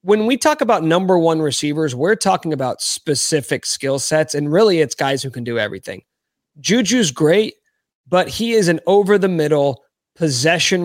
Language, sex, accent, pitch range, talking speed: English, male, American, 140-195 Hz, 160 wpm